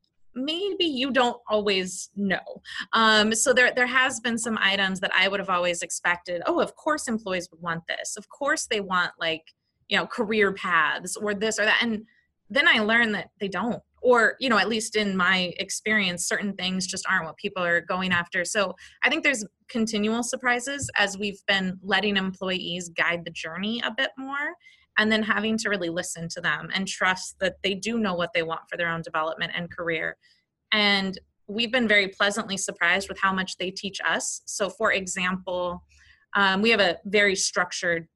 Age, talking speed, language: 20-39, 195 wpm, English